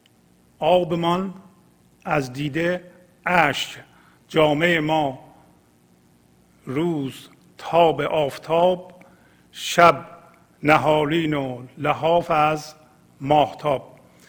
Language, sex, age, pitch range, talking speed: English, male, 50-69, 125-155 Hz, 65 wpm